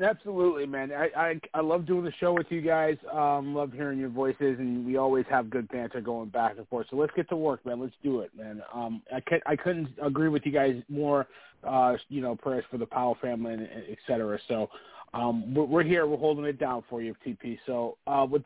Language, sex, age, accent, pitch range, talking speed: English, male, 30-49, American, 125-160 Hz, 230 wpm